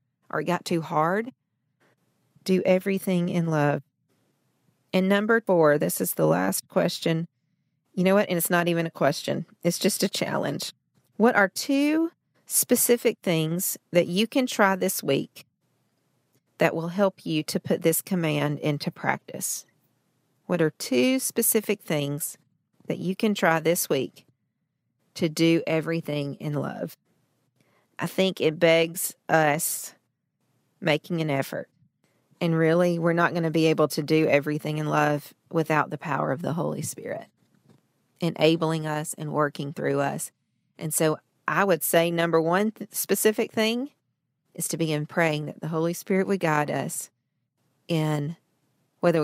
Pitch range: 150-180 Hz